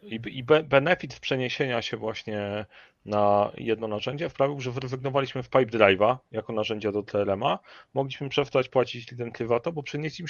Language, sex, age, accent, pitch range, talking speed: Polish, male, 40-59, native, 115-140 Hz, 145 wpm